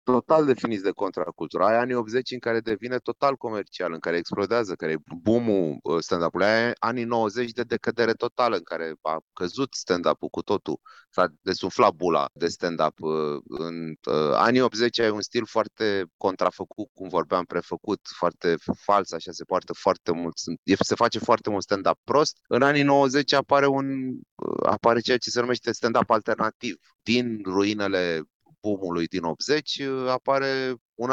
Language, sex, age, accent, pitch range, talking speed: Romanian, male, 30-49, native, 90-125 Hz, 150 wpm